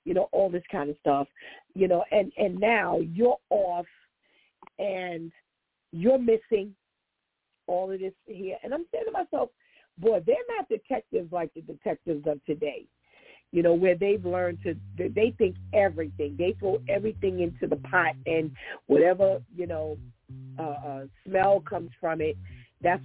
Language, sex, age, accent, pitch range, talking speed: English, female, 50-69, American, 145-200 Hz, 155 wpm